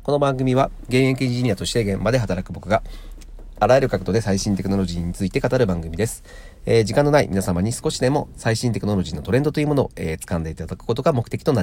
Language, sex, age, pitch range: Japanese, male, 40-59, 90-120 Hz